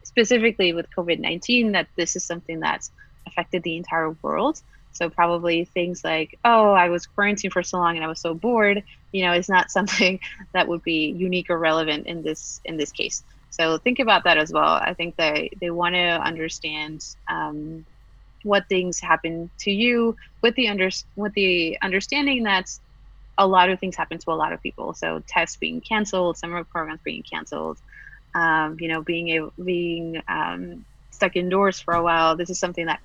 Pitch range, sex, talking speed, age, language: 160-190 Hz, female, 190 wpm, 30-49, English